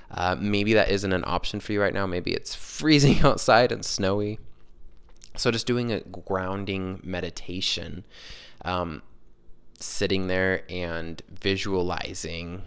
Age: 20-39